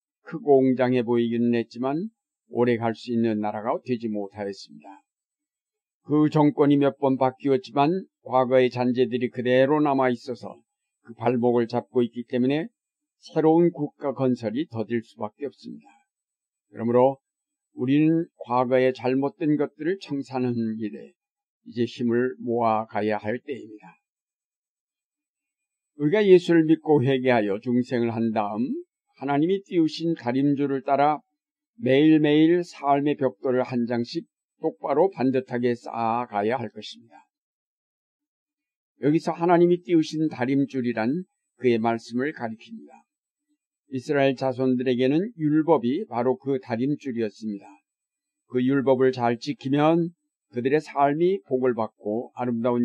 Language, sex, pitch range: Korean, male, 120-165 Hz